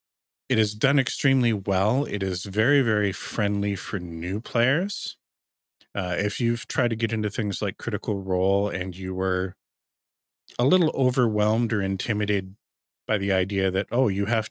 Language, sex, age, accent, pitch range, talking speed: English, male, 30-49, American, 90-115 Hz, 160 wpm